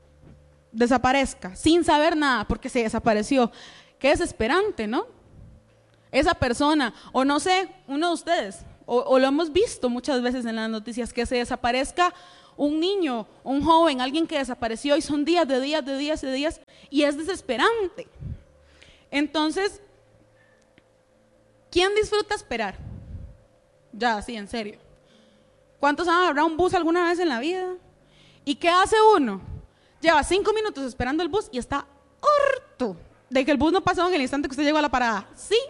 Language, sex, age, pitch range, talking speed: Spanish, female, 20-39, 245-355 Hz, 165 wpm